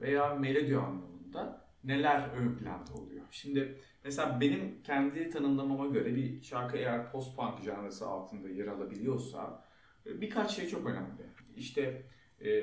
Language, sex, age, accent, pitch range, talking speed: Turkish, male, 40-59, native, 120-140 Hz, 130 wpm